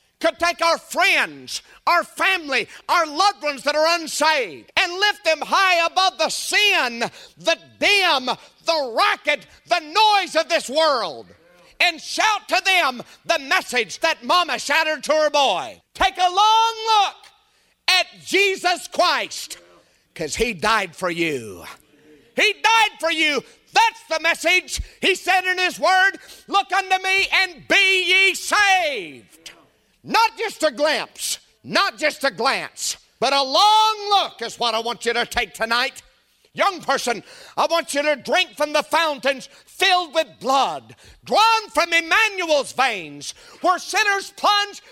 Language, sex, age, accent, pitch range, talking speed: English, male, 50-69, American, 295-385 Hz, 150 wpm